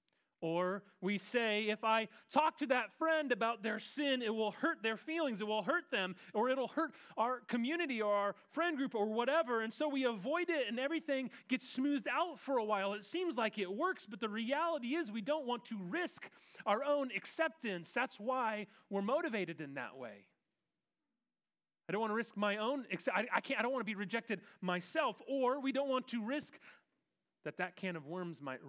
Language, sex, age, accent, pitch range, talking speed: English, male, 30-49, American, 180-265 Hz, 205 wpm